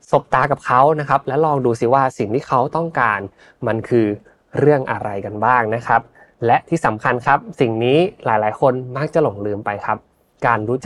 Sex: male